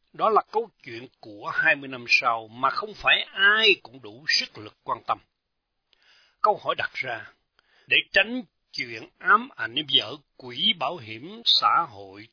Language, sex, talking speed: Vietnamese, male, 160 wpm